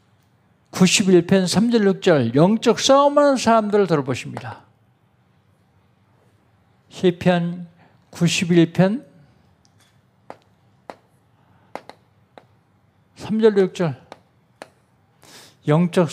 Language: Korean